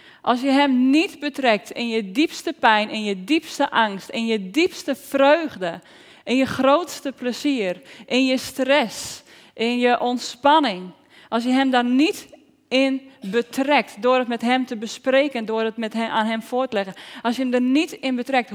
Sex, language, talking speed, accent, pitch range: female, Dutch, 175 wpm, Dutch, 180-270 Hz